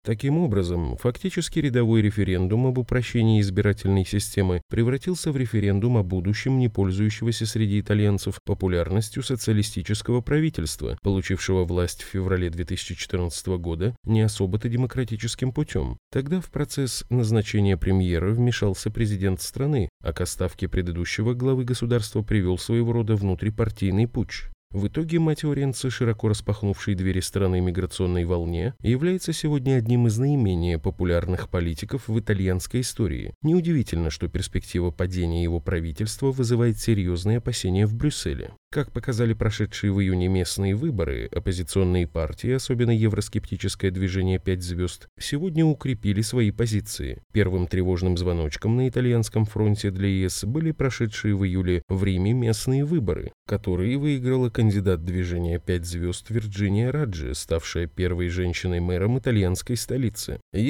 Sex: male